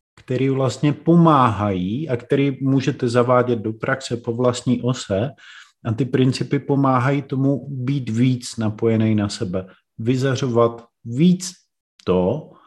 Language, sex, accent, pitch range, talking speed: Czech, male, native, 105-125 Hz, 120 wpm